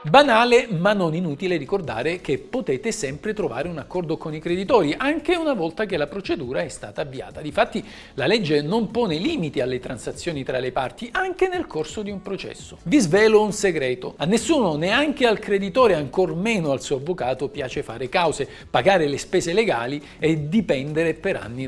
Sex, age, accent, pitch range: male, 50-69, native, 140-210 Hz